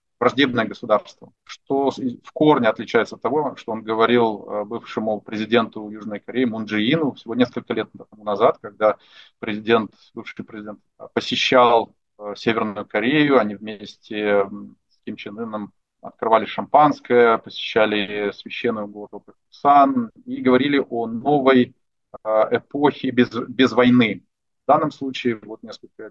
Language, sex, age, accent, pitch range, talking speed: Russian, male, 30-49, native, 110-135 Hz, 120 wpm